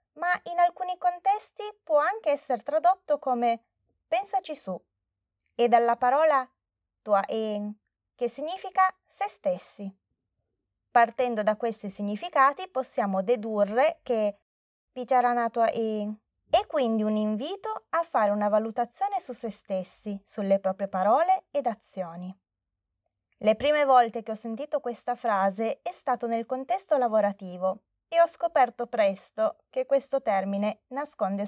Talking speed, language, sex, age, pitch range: 130 wpm, Italian, female, 20-39, 205-295 Hz